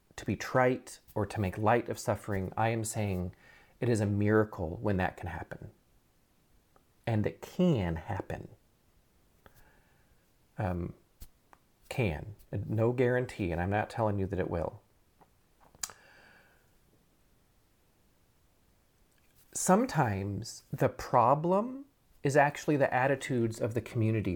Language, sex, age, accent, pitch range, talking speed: English, male, 30-49, American, 105-165 Hz, 115 wpm